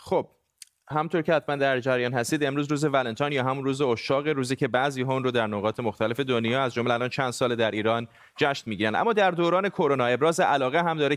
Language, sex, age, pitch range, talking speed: Persian, male, 30-49, 120-155 Hz, 215 wpm